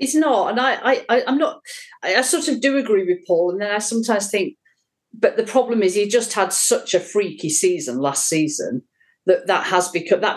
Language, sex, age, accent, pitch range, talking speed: English, female, 50-69, British, 170-235 Hz, 225 wpm